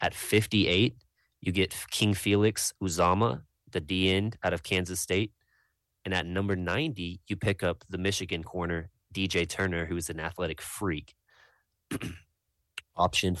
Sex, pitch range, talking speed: male, 85-100 Hz, 140 wpm